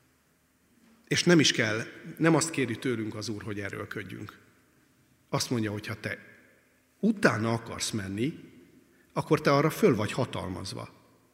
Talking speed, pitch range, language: 145 wpm, 105-130 Hz, Hungarian